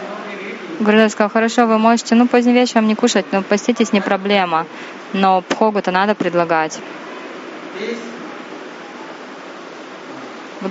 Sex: female